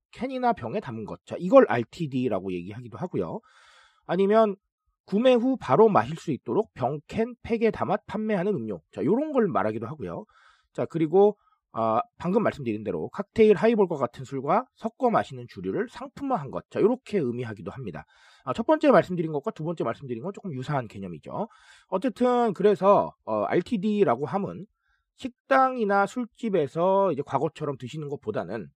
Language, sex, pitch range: Korean, male, 140-225 Hz